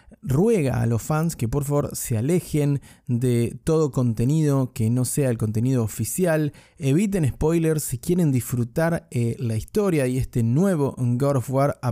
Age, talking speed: 20-39, 165 wpm